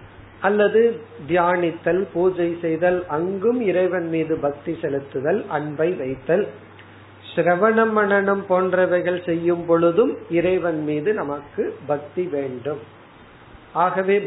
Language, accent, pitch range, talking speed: Tamil, native, 150-185 Hz, 85 wpm